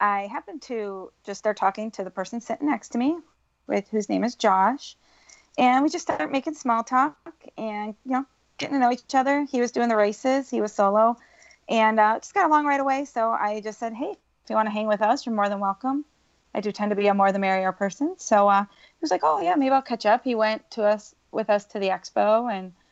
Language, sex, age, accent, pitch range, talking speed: English, female, 30-49, American, 195-250 Hz, 250 wpm